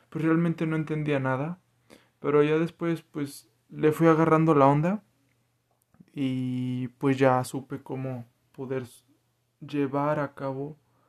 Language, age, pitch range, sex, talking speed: Spanish, 20-39, 130-155 Hz, male, 125 wpm